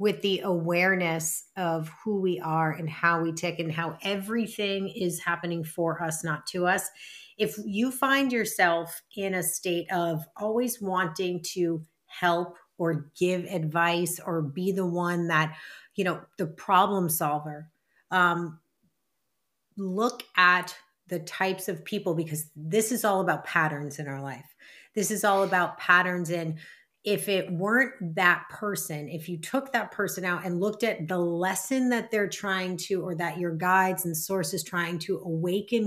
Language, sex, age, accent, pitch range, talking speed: English, female, 30-49, American, 170-205 Hz, 160 wpm